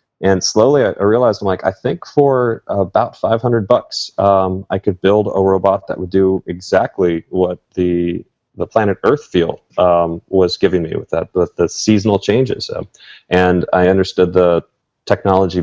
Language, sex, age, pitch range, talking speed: English, male, 30-49, 85-95 Hz, 170 wpm